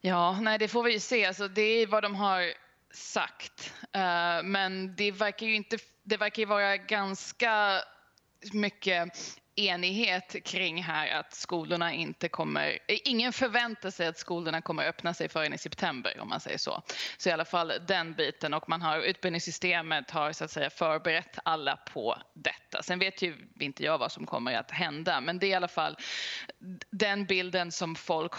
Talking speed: 180 wpm